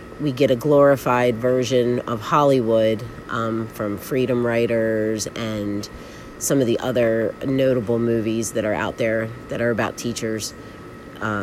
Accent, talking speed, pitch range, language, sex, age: American, 140 wpm, 115-145 Hz, English, female, 30-49